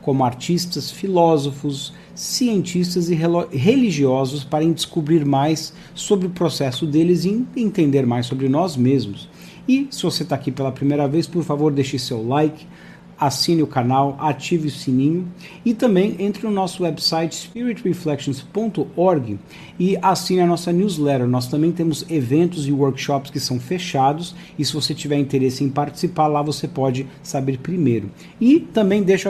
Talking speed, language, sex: 150 wpm, English, male